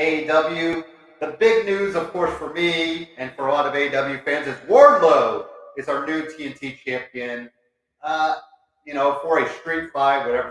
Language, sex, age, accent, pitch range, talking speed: English, male, 30-49, American, 125-155 Hz, 170 wpm